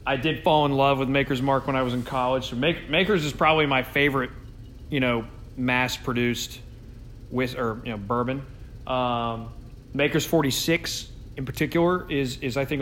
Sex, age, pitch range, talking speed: male, 30-49, 115-150 Hz, 175 wpm